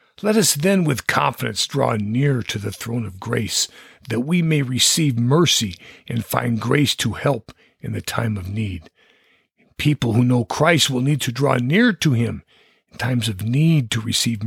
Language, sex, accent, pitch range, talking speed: English, male, American, 115-160 Hz, 185 wpm